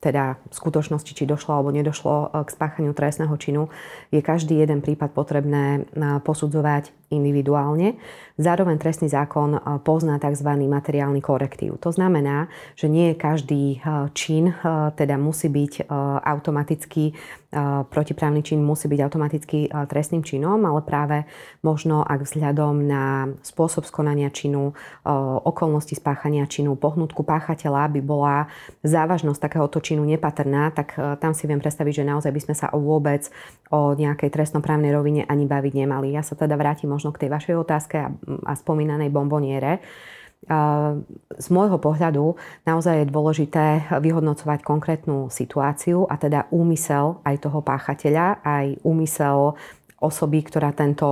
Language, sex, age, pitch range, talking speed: English, female, 30-49, 145-155 Hz, 130 wpm